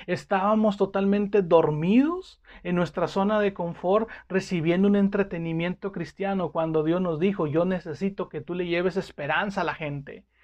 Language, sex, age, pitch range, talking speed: Spanish, male, 40-59, 160-200 Hz, 150 wpm